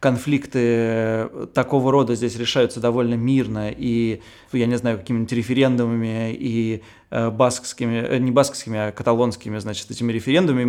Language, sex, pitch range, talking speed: Russian, male, 110-130 Hz, 125 wpm